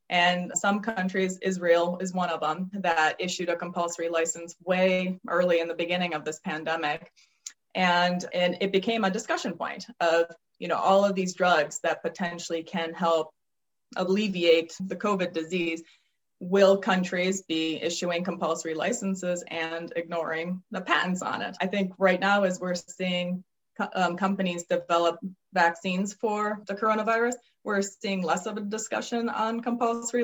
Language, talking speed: English, 155 wpm